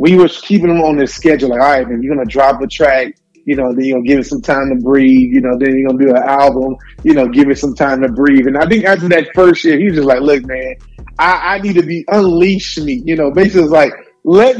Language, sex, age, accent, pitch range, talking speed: English, male, 20-39, American, 135-180 Hz, 290 wpm